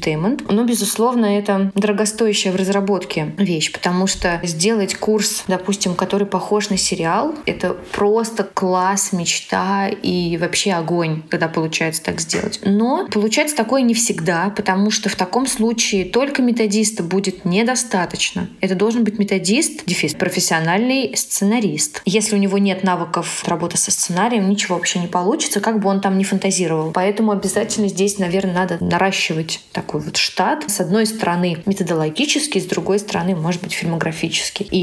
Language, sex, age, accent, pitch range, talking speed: Russian, female, 20-39, native, 180-215 Hz, 145 wpm